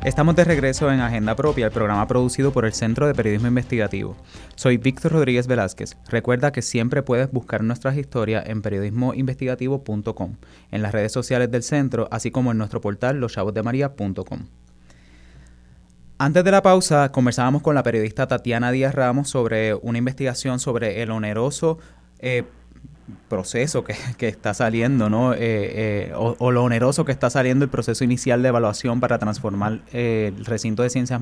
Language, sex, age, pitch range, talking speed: Spanish, male, 20-39, 110-130 Hz, 165 wpm